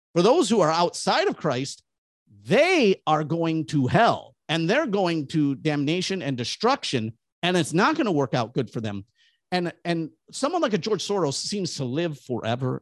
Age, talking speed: 50-69, 185 wpm